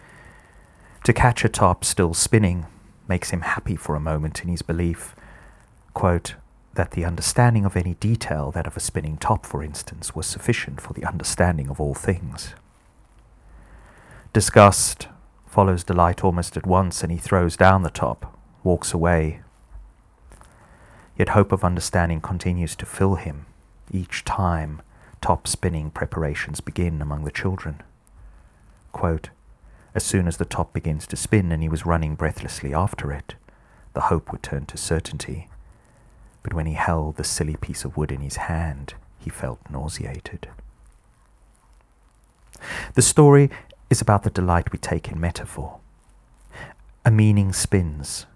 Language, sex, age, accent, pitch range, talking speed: English, male, 40-59, British, 80-100 Hz, 145 wpm